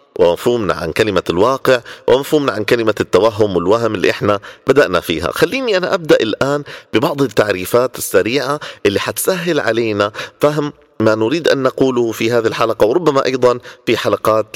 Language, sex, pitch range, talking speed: Arabic, male, 115-185 Hz, 145 wpm